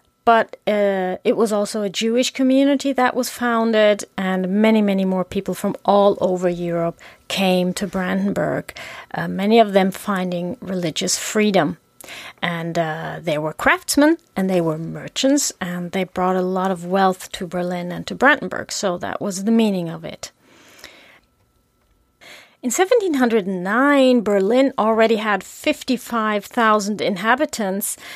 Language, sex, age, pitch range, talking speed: English, female, 30-49, 185-230 Hz, 140 wpm